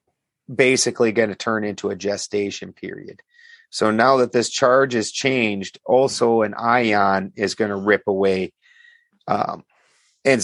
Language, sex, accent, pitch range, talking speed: English, male, American, 105-125 Hz, 145 wpm